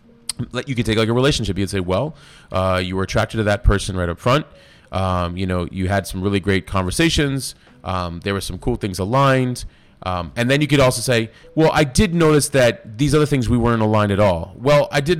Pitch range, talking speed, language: 100-145 Hz, 230 wpm, English